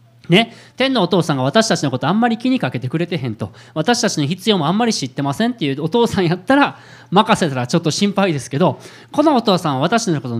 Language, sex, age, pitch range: Japanese, male, 20-39, 130-205 Hz